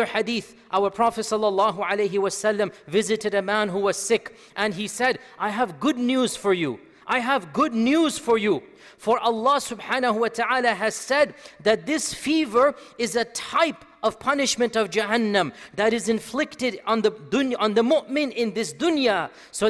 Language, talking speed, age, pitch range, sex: Bengali, 175 wpm, 40-59, 185-255 Hz, male